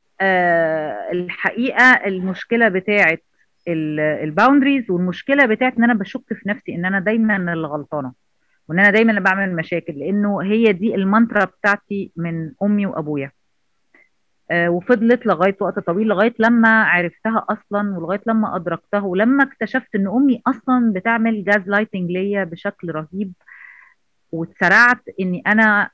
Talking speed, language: 125 wpm, Arabic